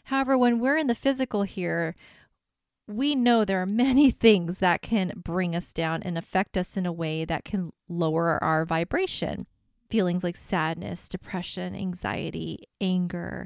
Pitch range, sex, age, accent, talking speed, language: 180-230 Hz, female, 20-39, American, 155 wpm, English